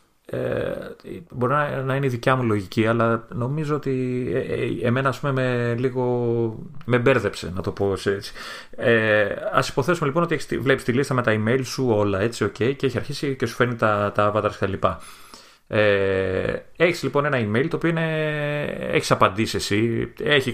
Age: 30-49